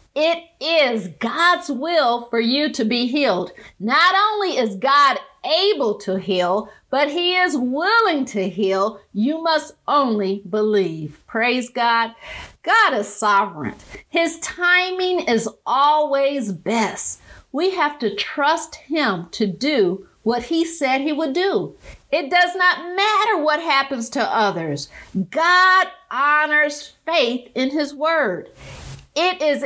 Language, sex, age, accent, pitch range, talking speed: English, female, 50-69, American, 230-325 Hz, 130 wpm